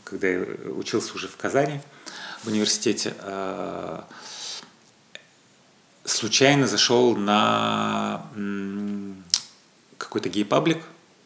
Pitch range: 100-125 Hz